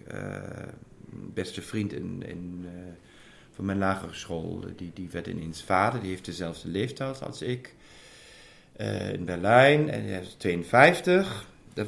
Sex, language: male, Dutch